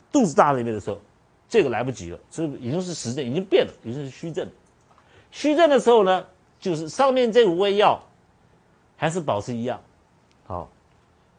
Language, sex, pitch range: Chinese, male, 115-175 Hz